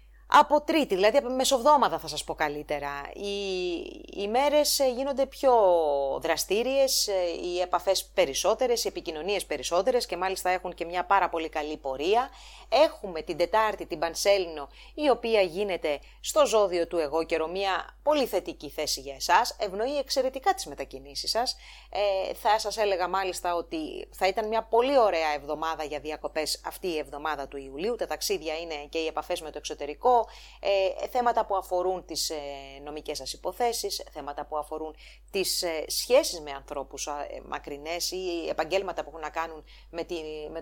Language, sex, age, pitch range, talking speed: English, female, 30-49, 155-235 Hz, 160 wpm